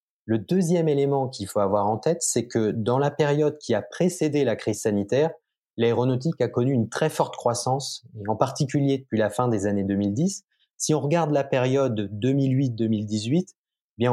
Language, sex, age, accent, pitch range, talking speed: French, male, 30-49, French, 110-140 Hz, 185 wpm